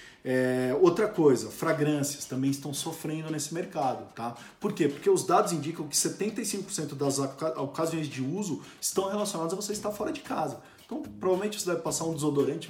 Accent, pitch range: Brazilian, 135-170 Hz